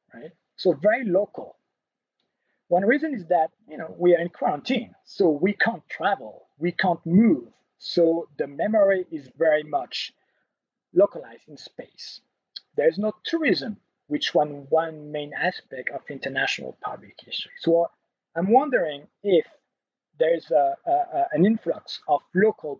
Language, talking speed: Portuguese, 140 wpm